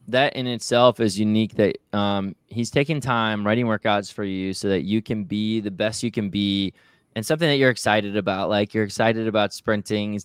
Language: English